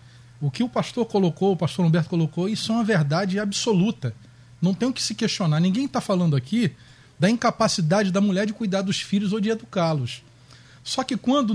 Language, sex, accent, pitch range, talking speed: Portuguese, male, Brazilian, 135-205 Hz, 195 wpm